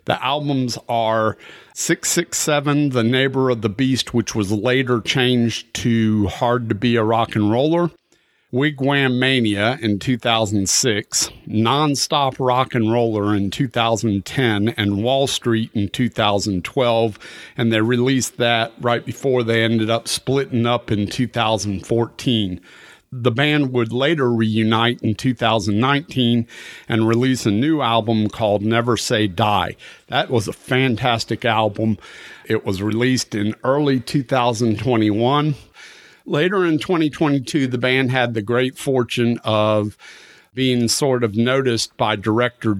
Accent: American